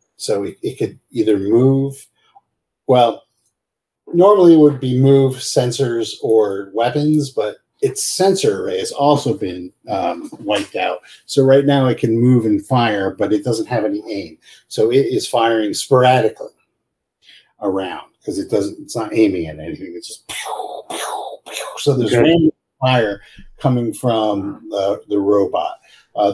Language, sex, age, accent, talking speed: English, male, 50-69, American, 145 wpm